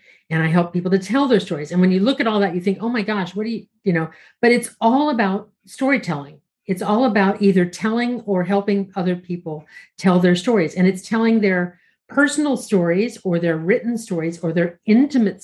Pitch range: 175-220 Hz